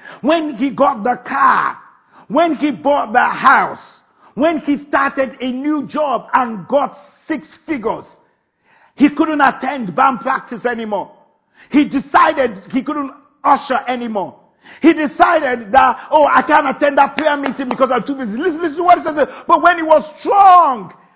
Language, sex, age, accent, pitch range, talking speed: English, male, 50-69, Nigerian, 265-320 Hz, 160 wpm